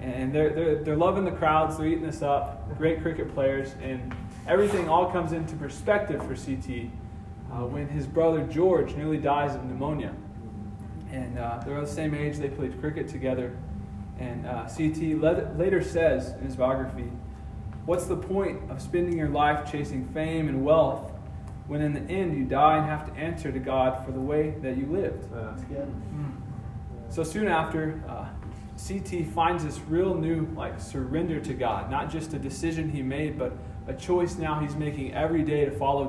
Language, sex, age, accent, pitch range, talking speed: English, male, 20-39, American, 115-155 Hz, 175 wpm